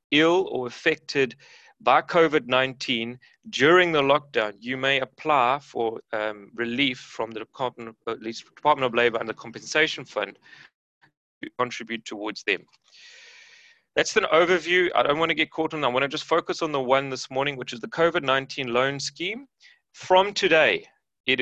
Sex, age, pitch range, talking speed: male, 30-49, 125-175 Hz, 165 wpm